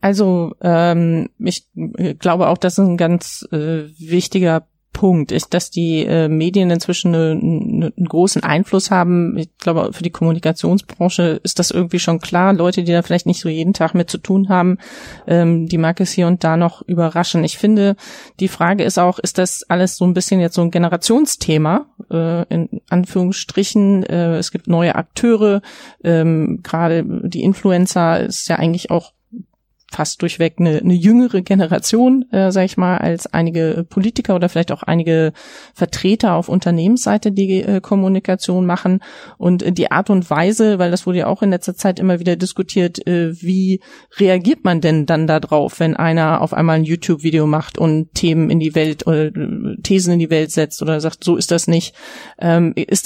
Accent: German